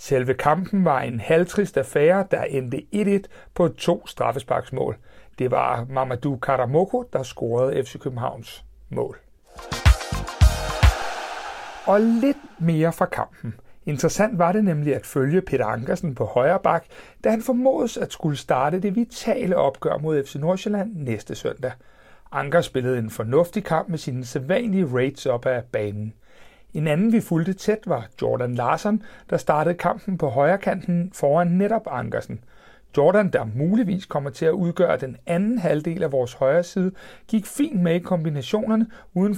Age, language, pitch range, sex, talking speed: 60-79, Danish, 135-200 Hz, male, 150 wpm